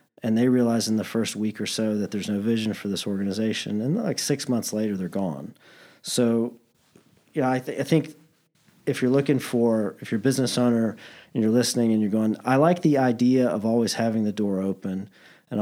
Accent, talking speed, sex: American, 210 wpm, male